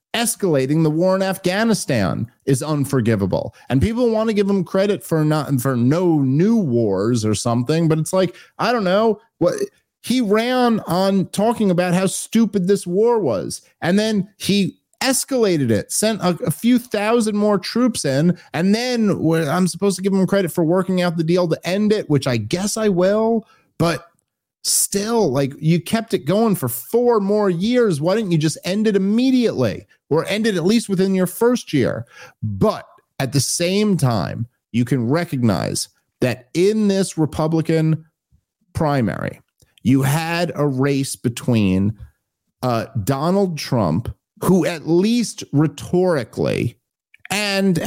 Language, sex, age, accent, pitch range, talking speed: English, male, 30-49, American, 135-200 Hz, 155 wpm